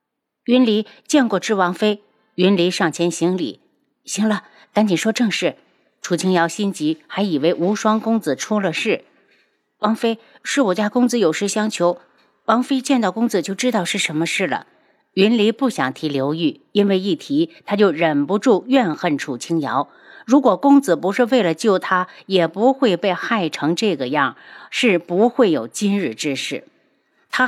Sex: female